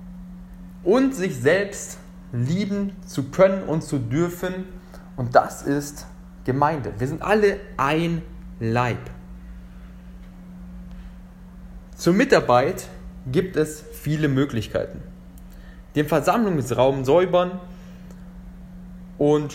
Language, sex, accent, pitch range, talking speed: German, male, German, 135-180 Hz, 85 wpm